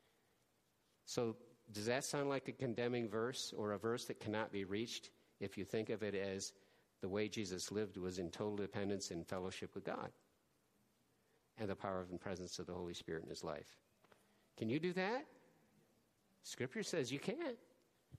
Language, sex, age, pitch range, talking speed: English, male, 50-69, 95-125 Hz, 175 wpm